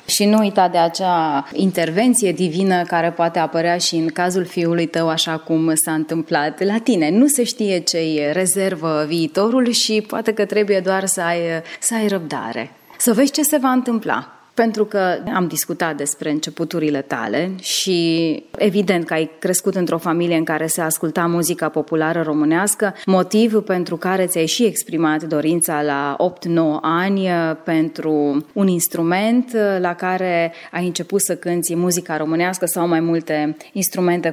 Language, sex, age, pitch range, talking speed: Romanian, female, 20-39, 170-215 Hz, 155 wpm